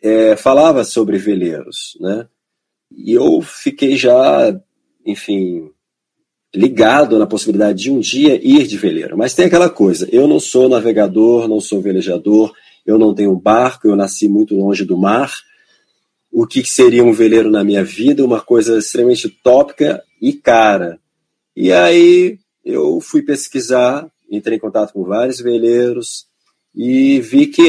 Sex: male